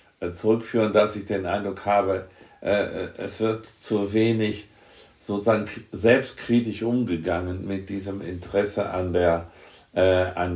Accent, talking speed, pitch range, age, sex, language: German, 110 wpm, 95-120 Hz, 50-69, male, German